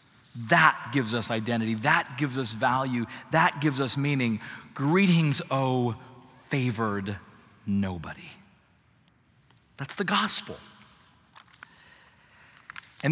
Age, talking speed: 40-59, 90 wpm